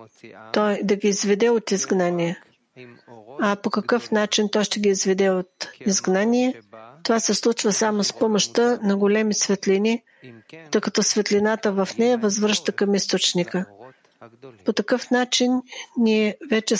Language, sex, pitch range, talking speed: English, female, 190-230 Hz, 130 wpm